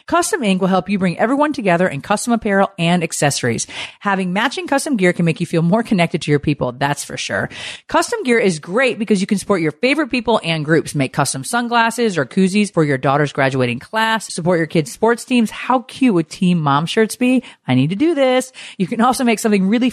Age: 40-59